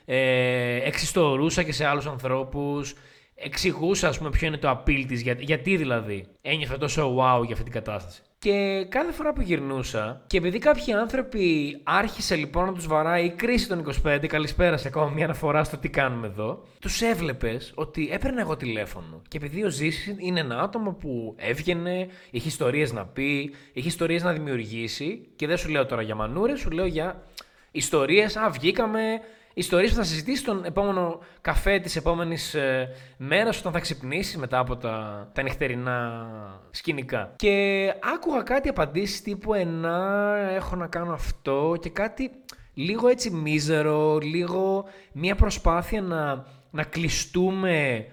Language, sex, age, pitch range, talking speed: Greek, male, 20-39, 135-190 Hz, 155 wpm